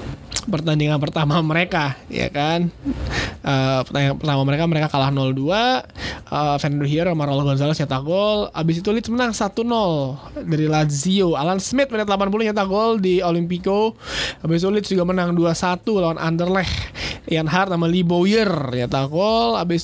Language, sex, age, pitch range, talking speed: Indonesian, male, 20-39, 150-185 Hz, 155 wpm